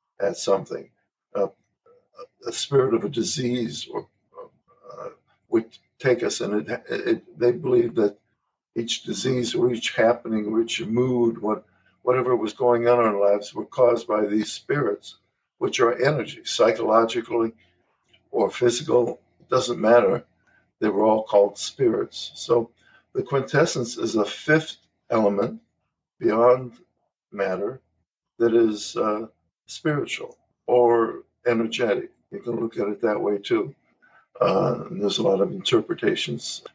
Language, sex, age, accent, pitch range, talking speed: English, male, 60-79, American, 110-155 Hz, 135 wpm